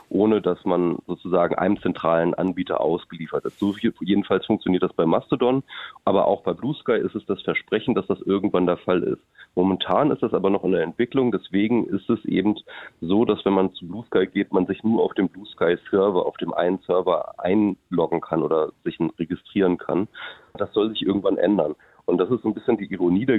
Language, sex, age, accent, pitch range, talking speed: German, male, 30-49, German, 95-115 Hz, 210 wpm